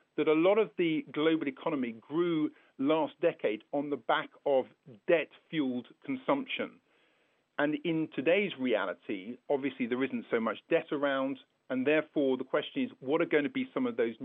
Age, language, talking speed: 50-69, English, 170 wpm